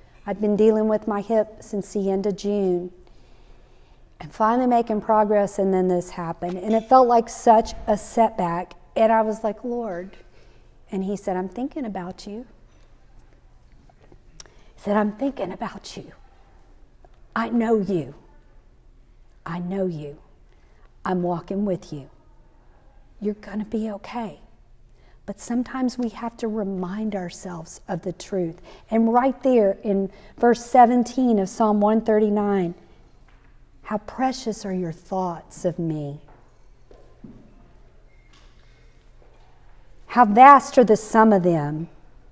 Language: English